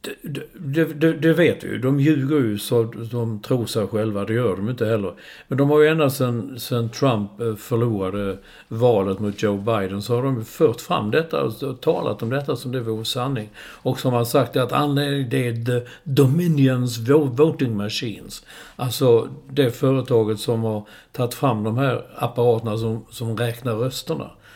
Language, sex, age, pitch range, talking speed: Swedish, male, 60-79, 110-140 Hz, 180 wpm